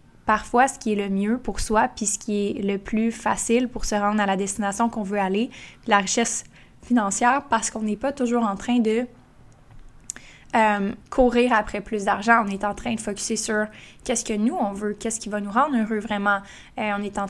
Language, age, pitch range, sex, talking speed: French, 10-29, 205-230 Hz, female, 220 wpm